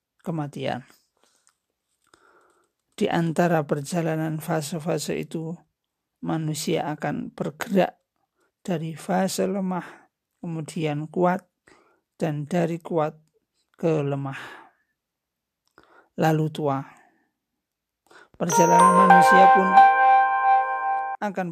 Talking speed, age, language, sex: 70 wpm, 50-69, Indonesian, male